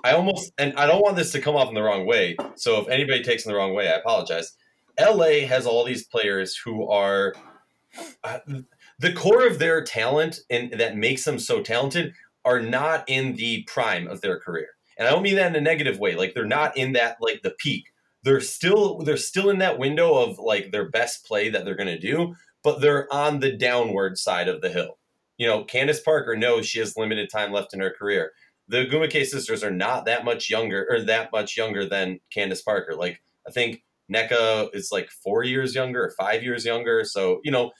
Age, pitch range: 30-49, 115-195 Hz